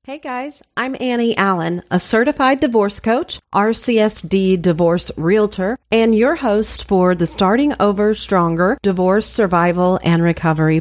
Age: 40-59